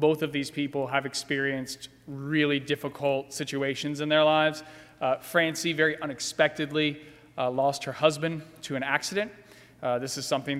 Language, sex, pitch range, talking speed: English, male, 140-170 Hz, 155 wpm